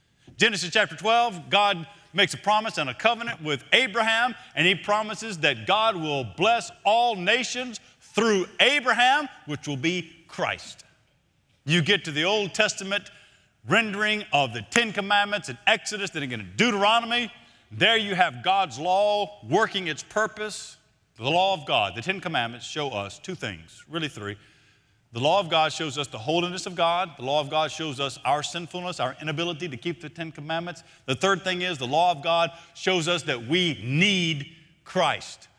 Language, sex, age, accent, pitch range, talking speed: English, male, 50-69, American, 145-205 Hz, 175 wpm